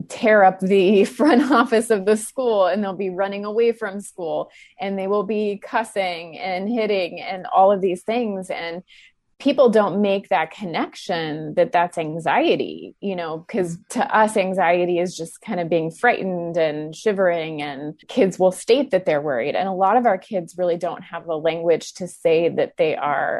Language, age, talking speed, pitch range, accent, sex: English, 20-39, 185 wpm, 170-215 Hz, American, female